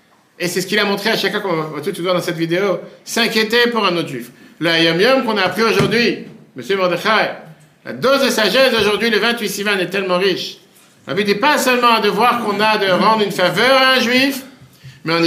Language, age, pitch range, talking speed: French, 50-69, 155-225 Hz, 230 wpm